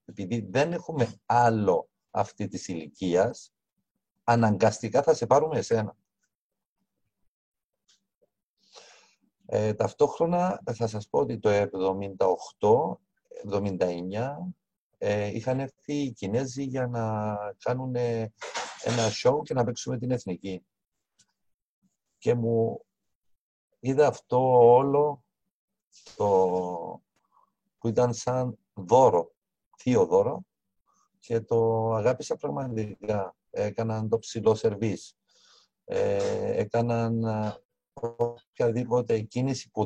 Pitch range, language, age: 110-150 Hz, Greek, 50-69